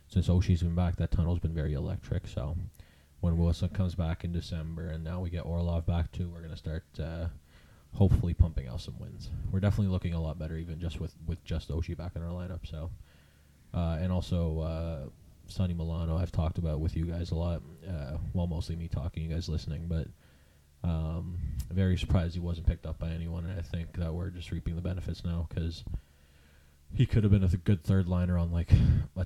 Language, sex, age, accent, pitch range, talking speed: English, male, 20-39, American, 80-95 Hz, 220 wpm